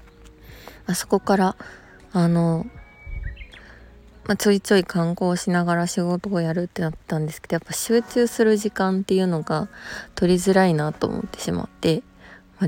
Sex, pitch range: female, 155-185 Hz